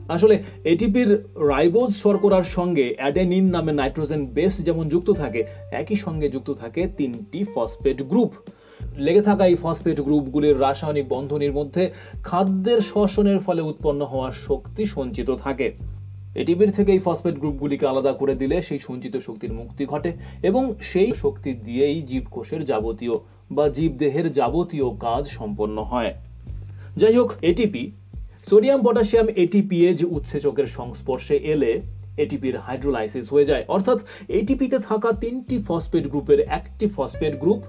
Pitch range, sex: 135-200 Hz, male